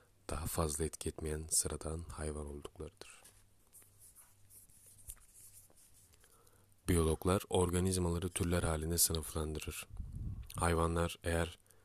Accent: native